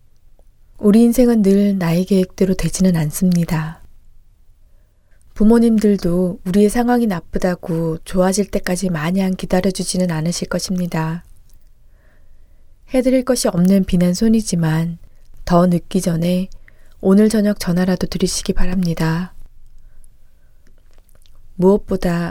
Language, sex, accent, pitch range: Korean, female, native, 165-200 Hz